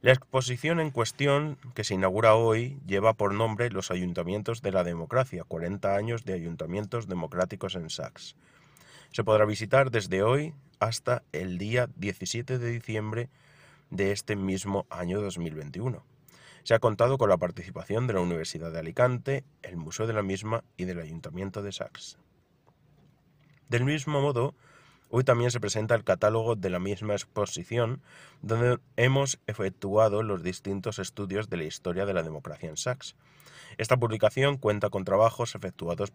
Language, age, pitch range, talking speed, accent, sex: Spanish, 30-49, 100-130 Hz, 155 wpm, Spanish, male